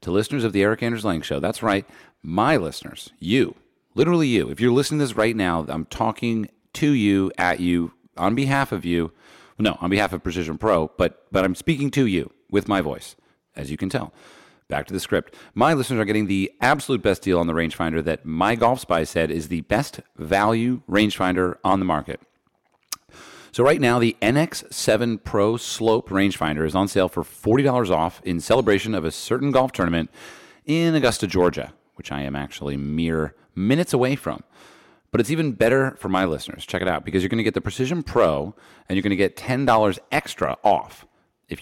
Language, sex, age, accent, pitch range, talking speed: English, male, 40-59, American, 85-120 Hz, 200 wpm